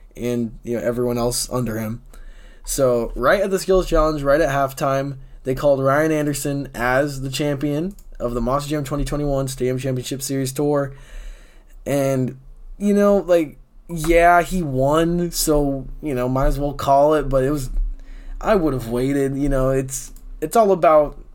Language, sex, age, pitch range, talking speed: English, male, 20-39, 120-145 Hz, 175 wpm